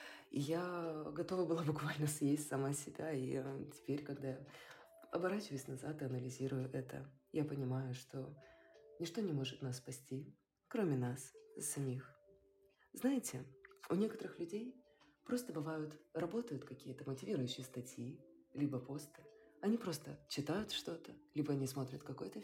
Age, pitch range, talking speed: 20-39, 135-165 Hz, 125 wpm